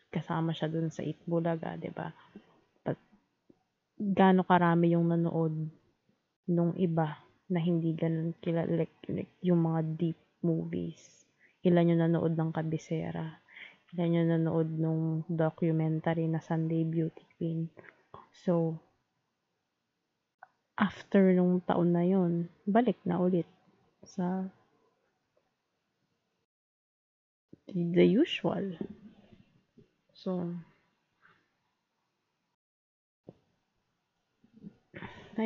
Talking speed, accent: 85 wpm, native